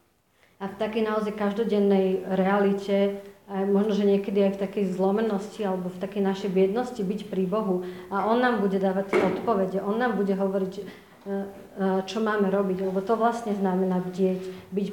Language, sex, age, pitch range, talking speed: Slovak, female, 40-59, 195-225 Hz, 160 wpm